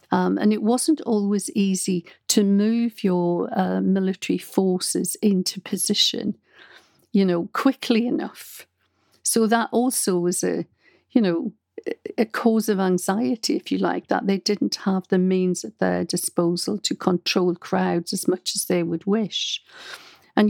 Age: 50-69